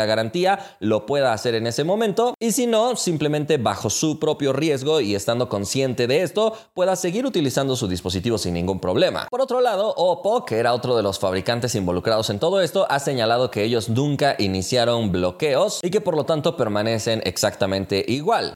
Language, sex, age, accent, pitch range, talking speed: Spanish, male, 30-49, Mexican, 105-165 Hz, 185 wpm